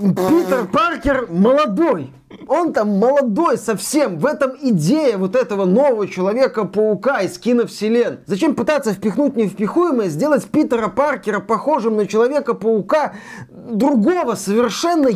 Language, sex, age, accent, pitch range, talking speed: Russian, male, 30-49, native, 175-240 Hz, 110 wpm